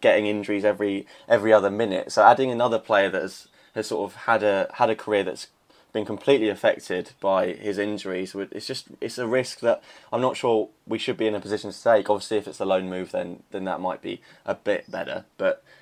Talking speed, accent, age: 225 wpm, British, 20-39